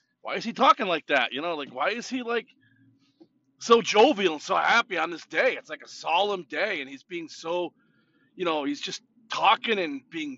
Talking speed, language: 215 wpm, English